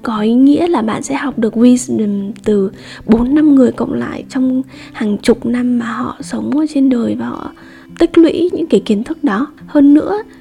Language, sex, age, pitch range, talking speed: Vietnamese, female, 10-29, 215-270 Hz, 200 wpm